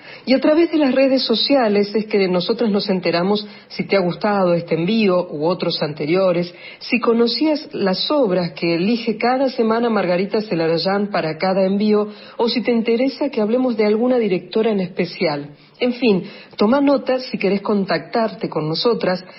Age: 40-59